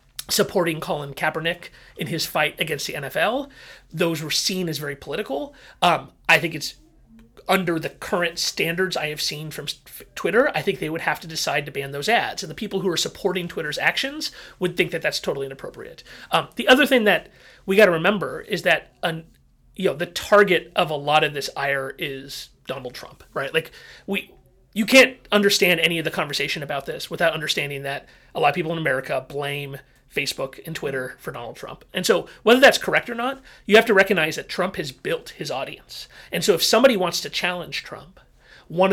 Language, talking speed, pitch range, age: English, 205 wpm, 150-195 Hz, 30-49